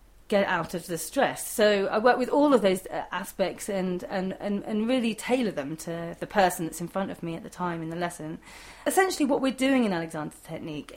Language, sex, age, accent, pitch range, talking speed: English, female, 30-49, British, 180-235 Hz, 230 wpm